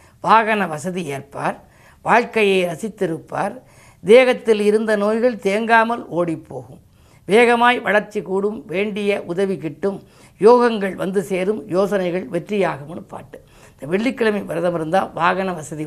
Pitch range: 165-210 Hz